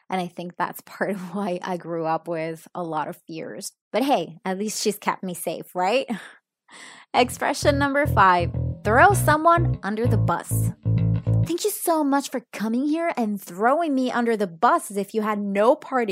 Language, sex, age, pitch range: English, female, 20-39, 180-240 Hz